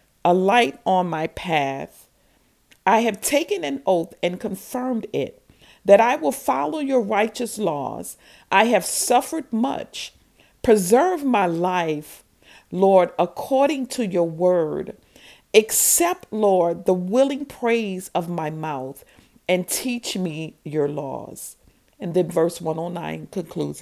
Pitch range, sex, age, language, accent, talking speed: 160-240 Hz, female, 50-69, English, American, 125 wpm